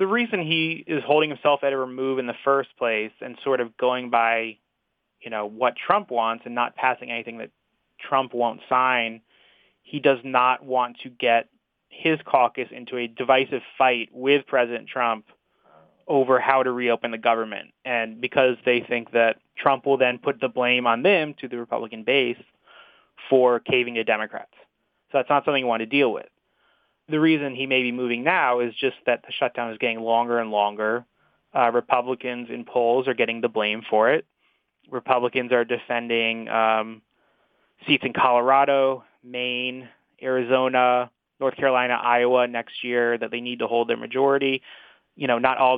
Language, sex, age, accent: English, male, 20-39, American